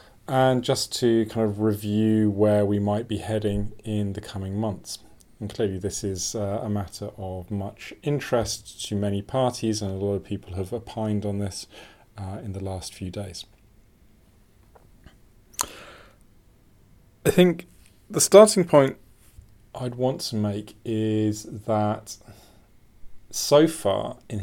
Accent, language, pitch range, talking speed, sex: British, English, 100-115 Hz, 140 wpm, male